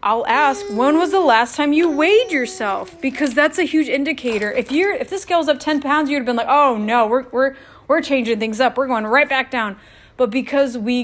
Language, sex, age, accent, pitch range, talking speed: English, female, 30-49, American, 220-275 Hz, 240 wpm